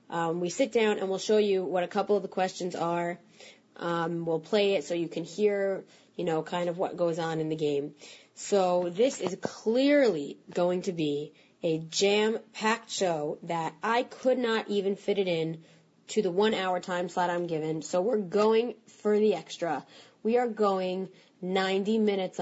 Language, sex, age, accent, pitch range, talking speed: English, female, 20-39, American, 170-215 Hz, 185 wpm